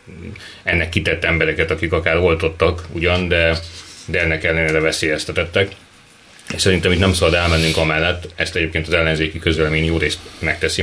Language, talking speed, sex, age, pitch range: Hungarian, 150 wpm, male, 30-49, 80-90 Hz